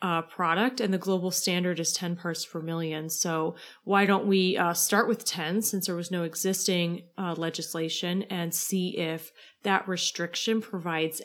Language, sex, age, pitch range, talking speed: English, female, 30-49, 170-195 Hz, 170 wpm